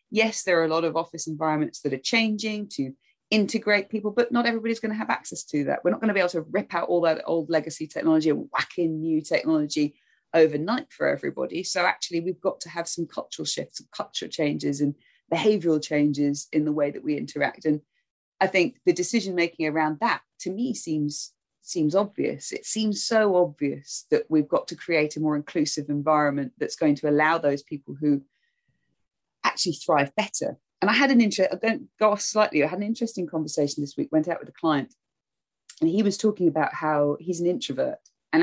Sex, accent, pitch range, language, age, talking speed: female, British, 150-215 Hz, English, 30-49, 205 wpm